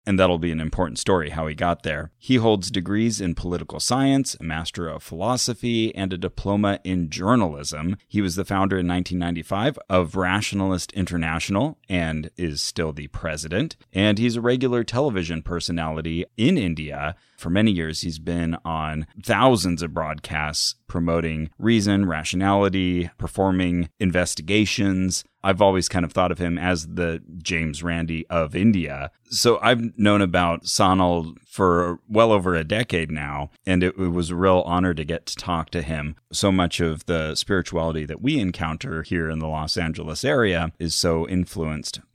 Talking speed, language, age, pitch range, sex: 160 wpm, English, 30-49, 80-95 Hz, male